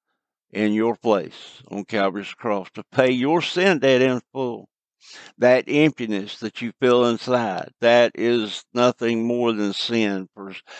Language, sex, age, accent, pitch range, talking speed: English, male, 60-79, American, 105-125 Hz, 145 wpm